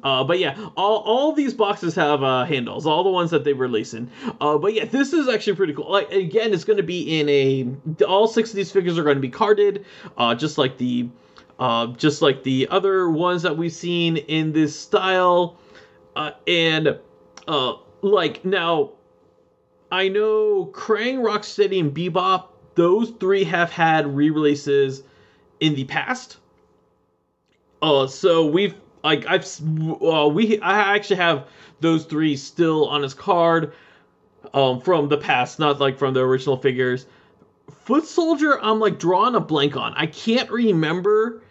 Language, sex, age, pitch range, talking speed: English, male, 30-49, 145-200 Hz, 165 wpm